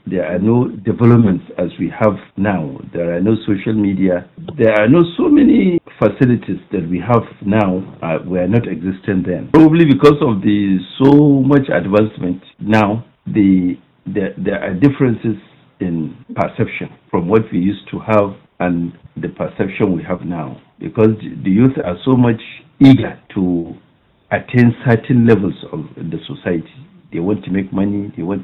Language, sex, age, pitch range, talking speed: English, male, 60-79, 95-130 Hz, 160 wpm